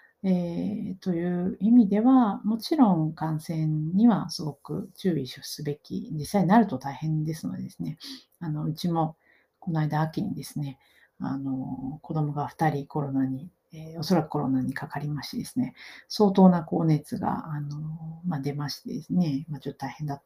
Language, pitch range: Japanese, 145-195 Hz